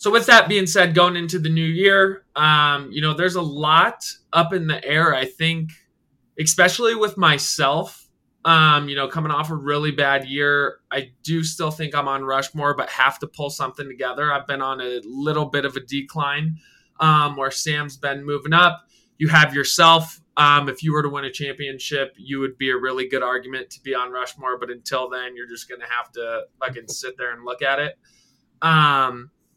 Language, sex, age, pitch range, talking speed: English, male, 20-39, 130-160 Hz, 205 wpm